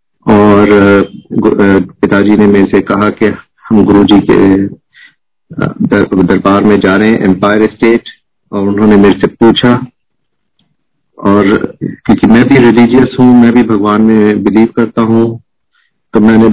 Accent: native